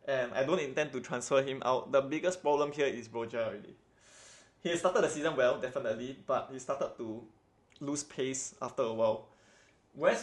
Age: 20-39